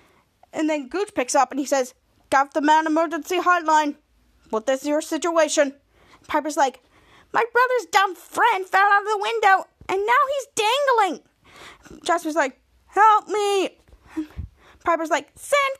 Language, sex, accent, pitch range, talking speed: English, female, American, 290-385 Hz, 150 wpm